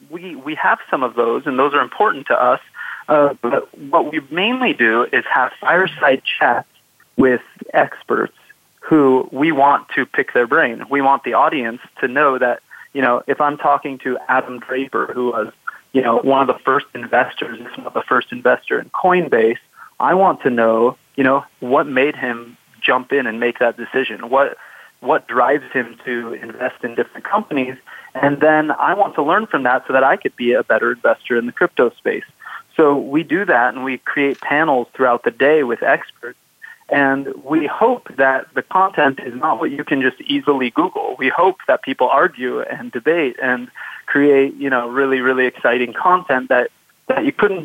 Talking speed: 190 wpm